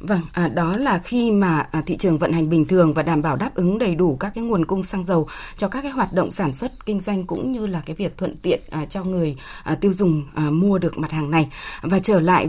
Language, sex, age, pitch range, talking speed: Vietnamese, female, 20-39, 165-210 Hz, 250 wpm